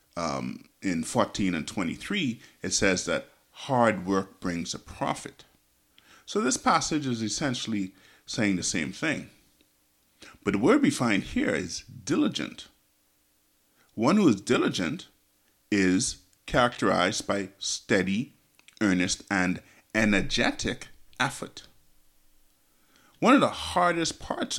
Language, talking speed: English, 115 wpm